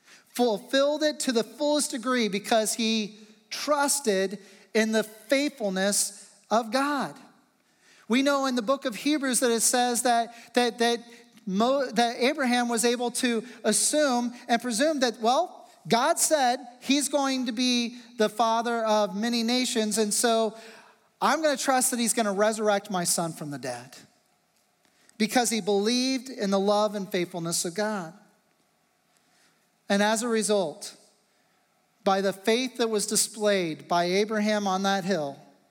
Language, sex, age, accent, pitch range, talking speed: English, male, 40-59, American, 200-245 Hz, 150 wpm